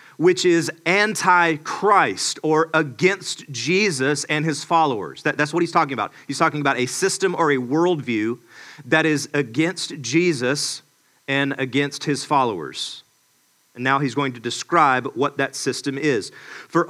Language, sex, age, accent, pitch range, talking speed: English, male, 40-59, American, 140-180 Hz, 145 wpm